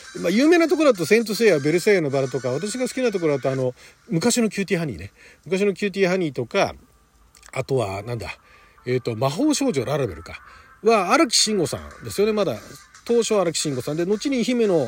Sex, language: male, Japanese